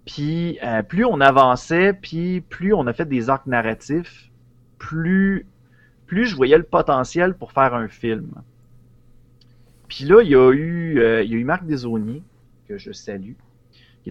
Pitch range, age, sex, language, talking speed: 115-150 Hz, 30-49, male, French, 170 wpm